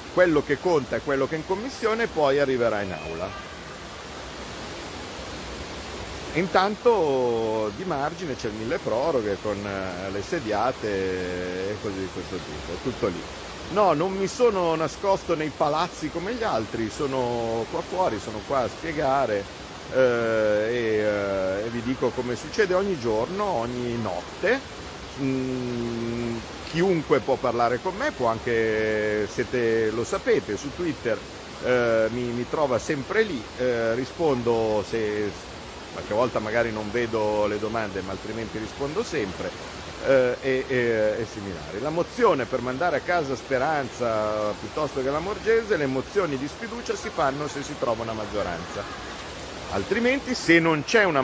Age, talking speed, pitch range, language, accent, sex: 50-69, 145 wpm, 105-145 Hz, Italian, native, male